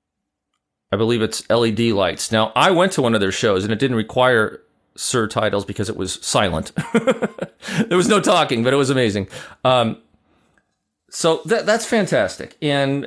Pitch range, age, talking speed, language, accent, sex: 110-185 Hz, 40-59, 165 wpm, English, American, male